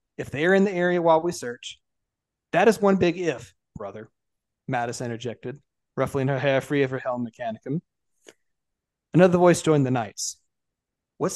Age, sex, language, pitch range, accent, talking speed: 30-49, male, English, 125-160 Hz, American, 165 wpm